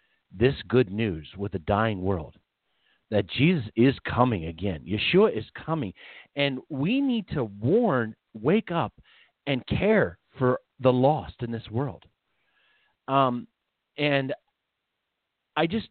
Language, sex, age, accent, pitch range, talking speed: English, male, 40-59, American, 100-145 Hz, 130 wpm